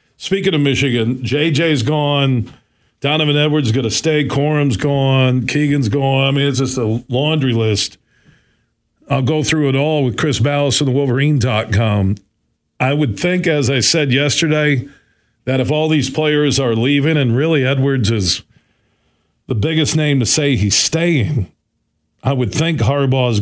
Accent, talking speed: American, 160 wpm